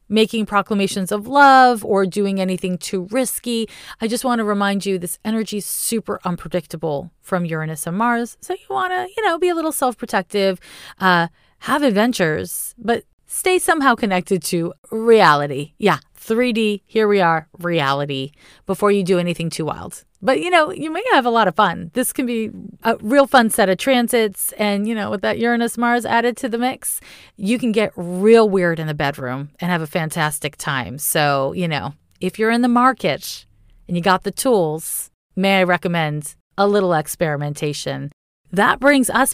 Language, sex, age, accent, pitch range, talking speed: English, female, 30-49, American, 165-230 Hz, 180 wpm